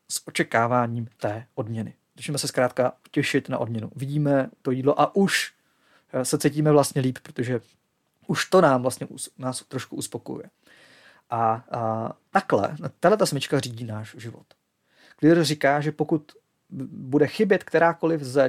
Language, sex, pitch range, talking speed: Czech, male, 120-150 Hz, 145 wpm